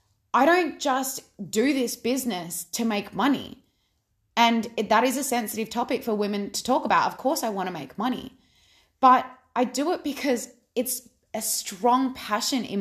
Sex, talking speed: female, 175 wpm